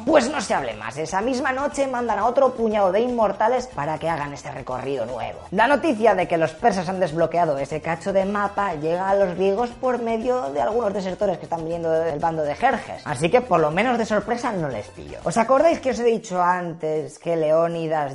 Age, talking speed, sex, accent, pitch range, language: 20-39, 220 wpm, female, Spanish, 160-235 Hz, Spanish